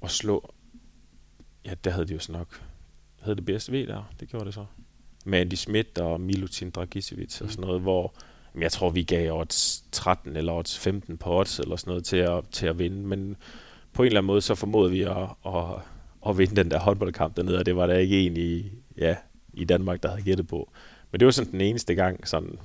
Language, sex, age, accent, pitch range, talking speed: Danish, male, 20-39, native, 90-100 Hz, 225 wpm